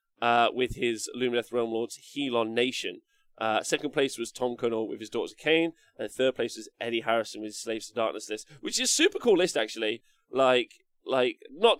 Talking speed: 210 wpm